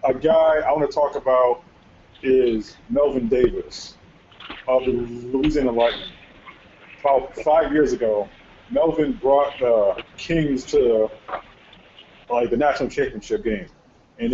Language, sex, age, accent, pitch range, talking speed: English, male, 20-39, American, 120-170 Hz, 115 wpm